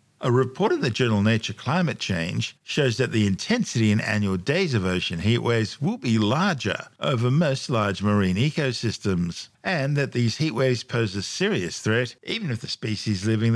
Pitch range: 105-135 Hz